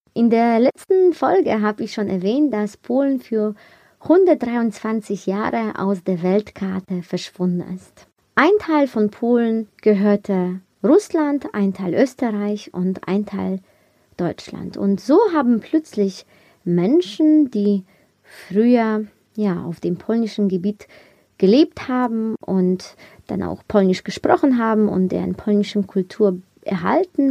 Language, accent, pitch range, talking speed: German, German, 190-255 Hz, 125 wpm